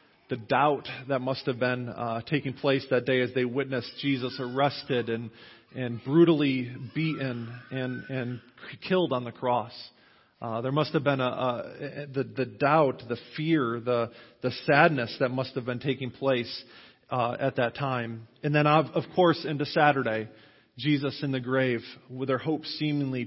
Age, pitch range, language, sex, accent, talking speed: 40-59, 125-145 Hz, English, male, American, 170 wpm